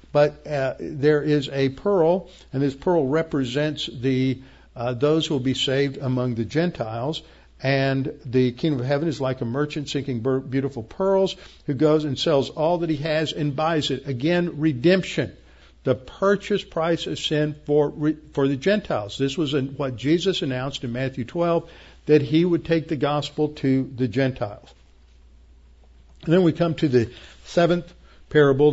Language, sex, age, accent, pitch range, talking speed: English, male, 60-79, American, 120-150 Hz, 165 wpm